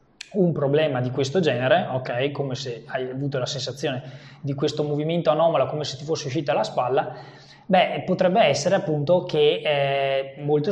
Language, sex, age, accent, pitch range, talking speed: Italian, male, 20-39, native, 130-155 Hz, 170 wpm